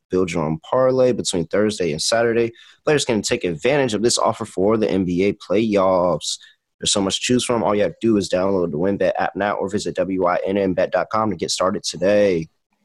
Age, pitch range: 30-49, 95-125 Hz